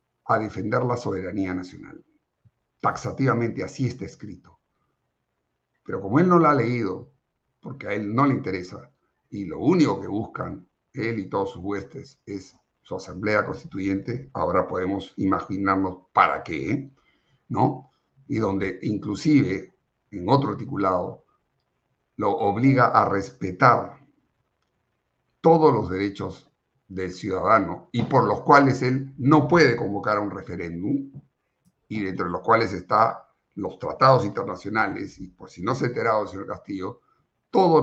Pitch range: 100-140 Hz